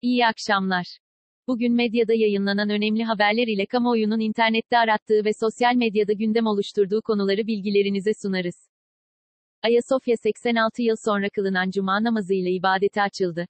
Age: 40-59